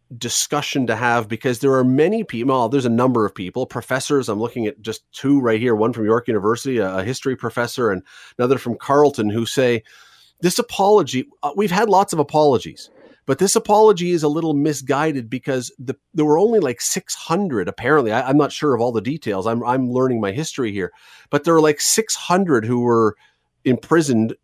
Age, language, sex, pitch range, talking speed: 40-59, English, male, 115-155 Hz, 195 wpm